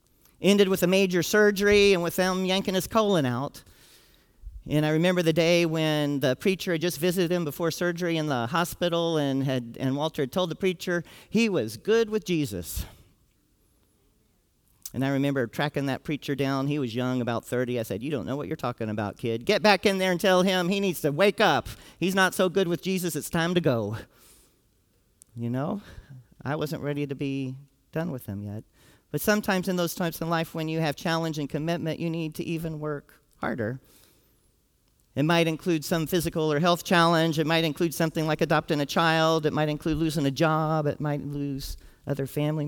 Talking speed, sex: 200 wpm, male